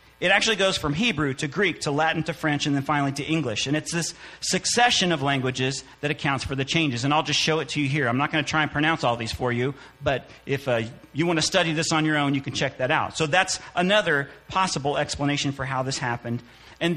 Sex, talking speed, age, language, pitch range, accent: male, 255 wpm, 40-59, English, 135-180 Hz, American